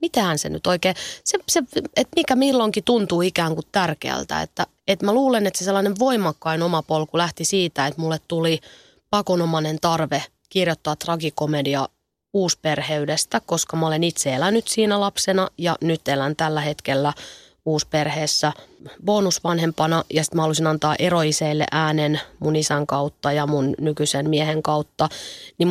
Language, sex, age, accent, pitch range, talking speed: Finnish, female, 20-39, native, 155-185 Hz, 140 wpm